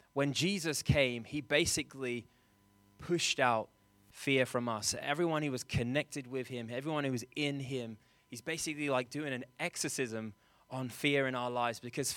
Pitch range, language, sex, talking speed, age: 125-150 Hz, English, male, 165 wpm, 20-39